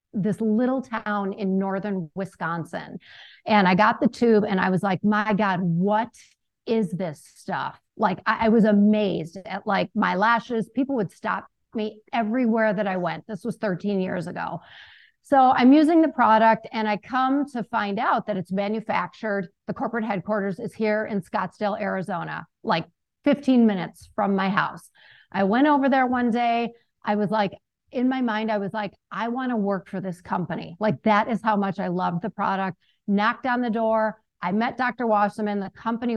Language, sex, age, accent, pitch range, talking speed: English, female, 40-59, American, 200-235 Hz, 185 wpm